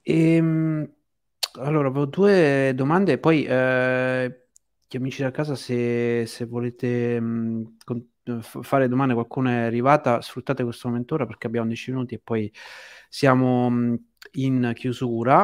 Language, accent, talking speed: Italian, native, 130 wpm